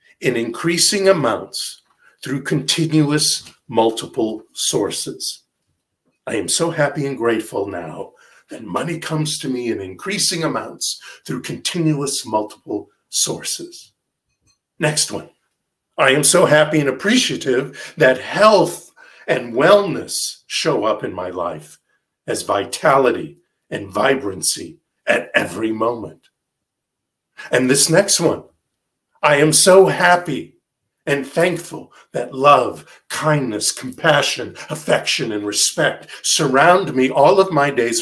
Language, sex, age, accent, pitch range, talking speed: English, male, 50-69, American, 125-170 Hz, 115 wpm